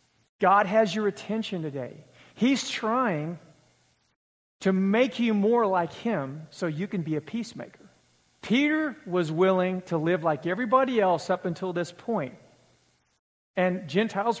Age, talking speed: 50-69, 140 wpm